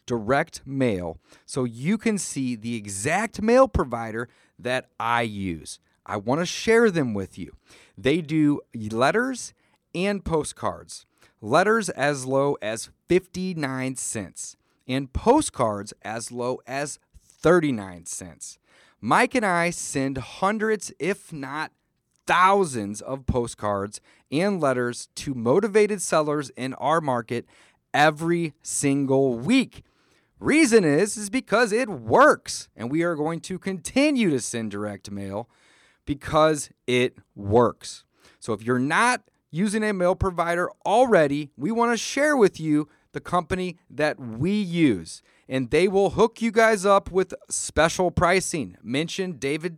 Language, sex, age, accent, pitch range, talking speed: English, male, 30-49, American, 125-190 Hz, 130 wpm